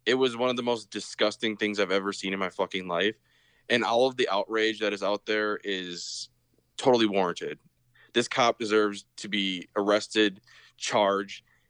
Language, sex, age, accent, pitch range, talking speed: English, male, 20-39, American, 105-135 Hz, 175 wpm